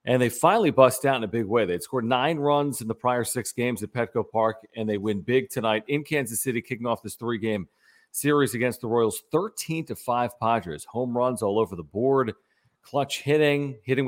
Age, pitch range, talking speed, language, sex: 40-59, 115-135 Hz, 215 wpm, English, male